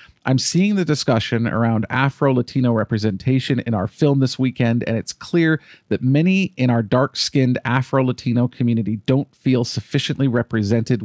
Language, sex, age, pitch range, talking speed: English, male, 40-59, 115-135 Hz, 140 wpm